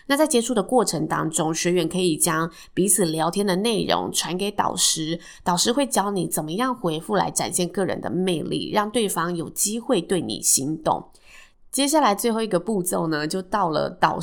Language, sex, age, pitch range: Chinese, female, 20-39, 165-205 Hz